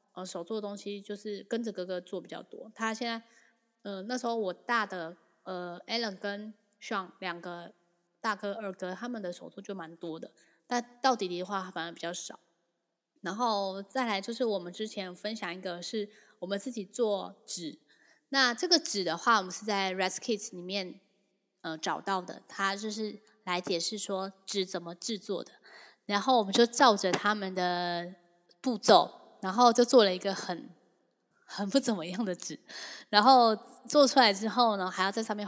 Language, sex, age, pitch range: Chinese, female, 10-29, 180-225 Hz